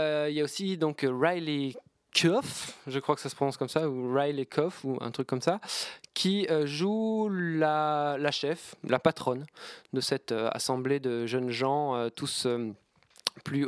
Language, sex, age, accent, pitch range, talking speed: French, male, 20-39, French, 145-180 Hz, 165 wpm